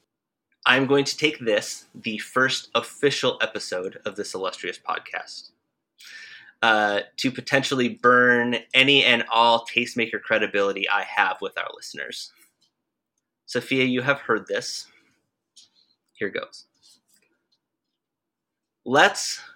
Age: 30-49